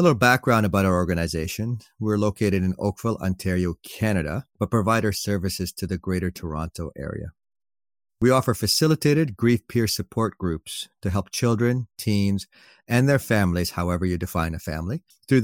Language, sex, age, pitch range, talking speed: English, male, 40-59, 90-110 Hz, 160 wpm